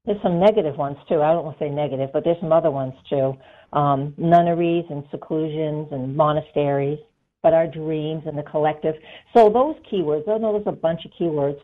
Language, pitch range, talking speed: English, 140-170 Hz, 200 wpm